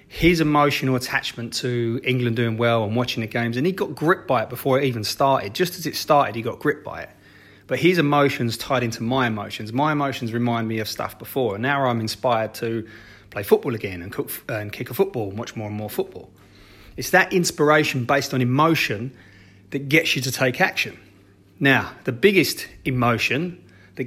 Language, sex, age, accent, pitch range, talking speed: English, male, 30-49, British, 110-140 Hz, 200 wpm